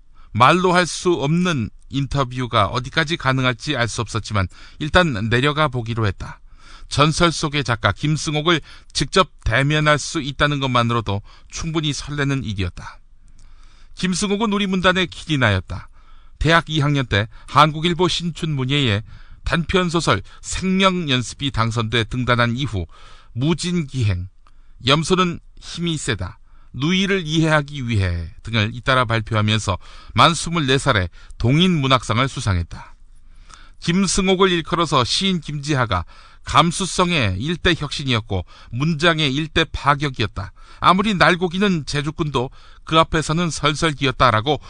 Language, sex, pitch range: Korean, male, 105-165 Hz